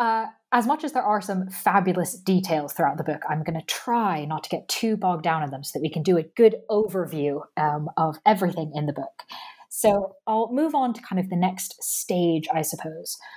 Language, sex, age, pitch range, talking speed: English, female, 20-39, 170-215 Hz, 225 wpm